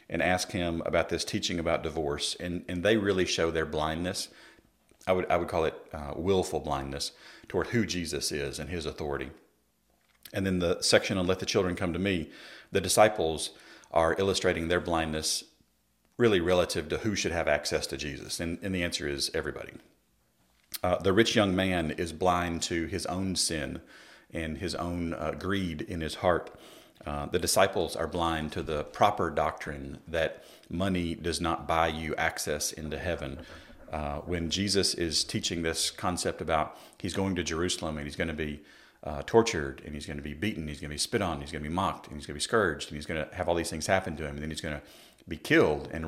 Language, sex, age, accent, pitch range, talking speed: English, male, 40-59, American, 75-90 Hz, 210 wpm